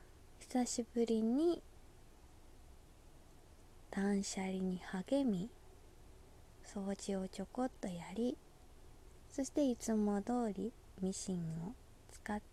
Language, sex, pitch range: Japanese, female, 190-265 Hz